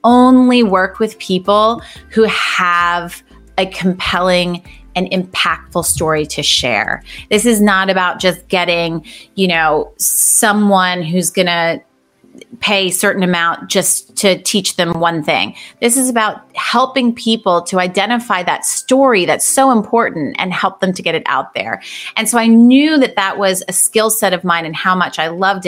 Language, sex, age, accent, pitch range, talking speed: English, female, 30-49, American, 175-220 Hz, 165 wpm